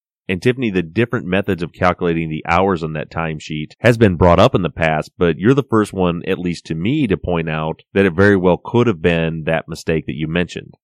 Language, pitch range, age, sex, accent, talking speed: English, 80-95 Hz, 30-49, male, American, 240 wpm